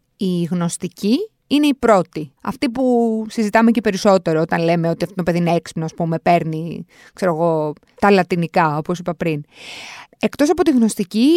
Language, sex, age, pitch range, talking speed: Greek, female, 20-39, 175-275 Hz, 160 wpm